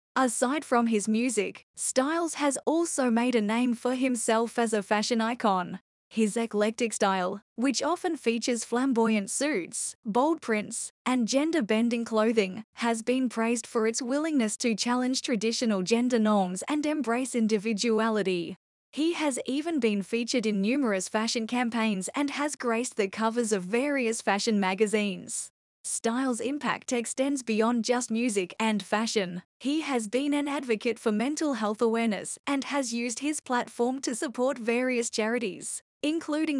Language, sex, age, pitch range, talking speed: English, female, 10-29, 220-265 Hz, 145 wpm